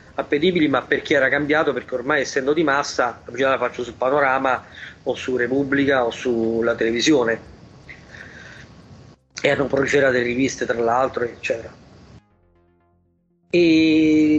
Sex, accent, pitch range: male, native, 120-140 Hz